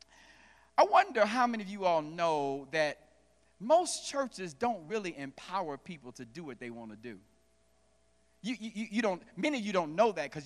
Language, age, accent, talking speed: English, 50-69, American, 190 wpm